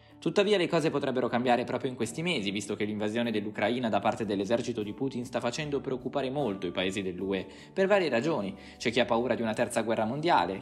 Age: 20-39